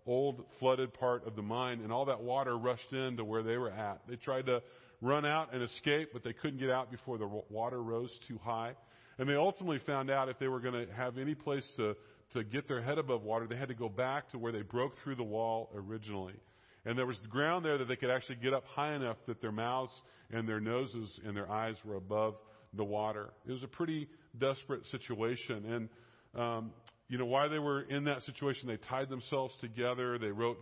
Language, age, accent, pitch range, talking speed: English, 40-59, American, 115-135 Hz, 225 wpm